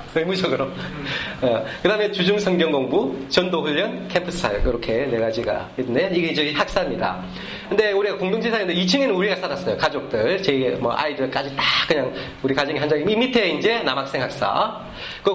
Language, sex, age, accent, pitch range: Korean, male, 40-59, native, 140-200 Hz